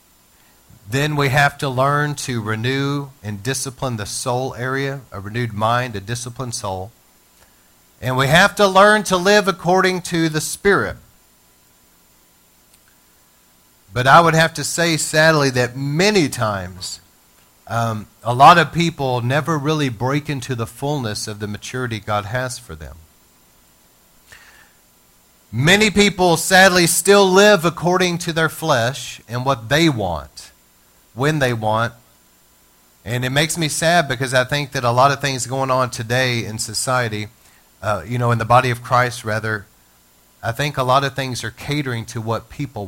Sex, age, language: male, 40-59, English